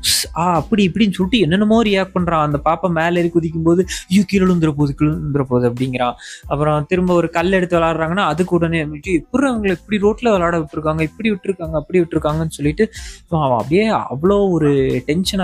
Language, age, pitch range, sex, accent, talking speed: Tamil, 20-39, 155-195 Hz, male, native, 150 wpm